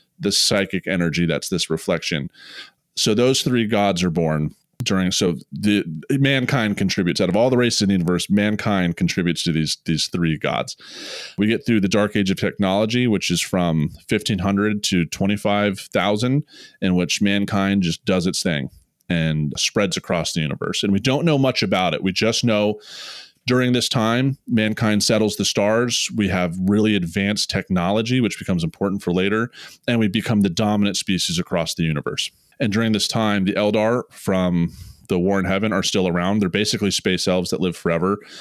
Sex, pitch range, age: male, 90-110 Hz, 30-49